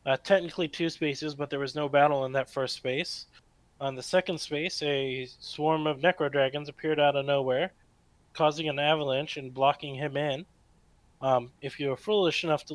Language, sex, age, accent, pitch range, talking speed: English, male, 20-39, American, 135-155 Hz, 190 wpm